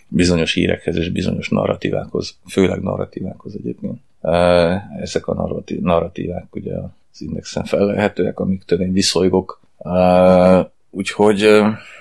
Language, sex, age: Hungarian, male, 30-49